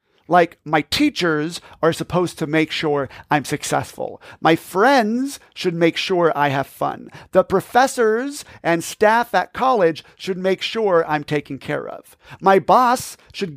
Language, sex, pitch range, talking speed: English, male, 150-205 Hz, 150 wpm